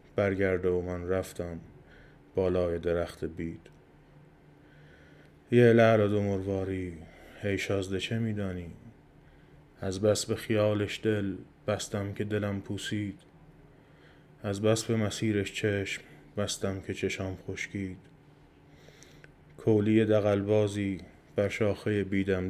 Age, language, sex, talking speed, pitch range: 20-39, Persian, male, 100 wpm, 95-105 Hz